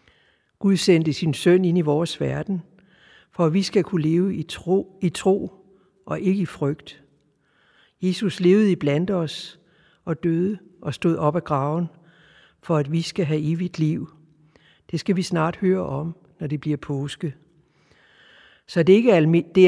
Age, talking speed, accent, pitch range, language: 60-79, 160 wpm, native, 155-180 Hz, Danish